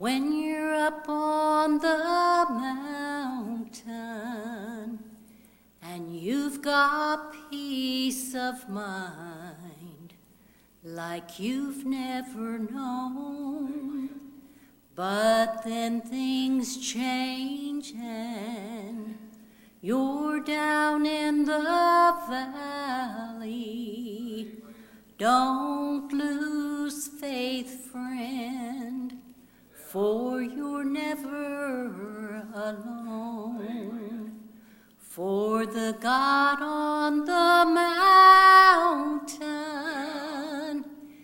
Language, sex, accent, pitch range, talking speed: English, female, American, 230-300 Hz, 60 wpm